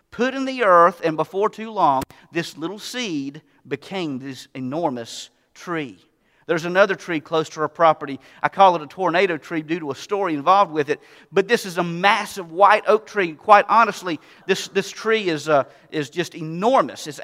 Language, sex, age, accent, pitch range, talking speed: English, male, 40-59, American, 170-235 Hz, 190 wpm